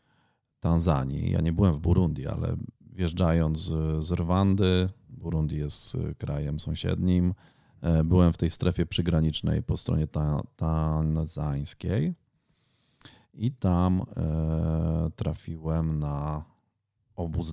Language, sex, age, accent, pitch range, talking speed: Polish, male, 40-59, native, 80-105 Hz, 90 wpm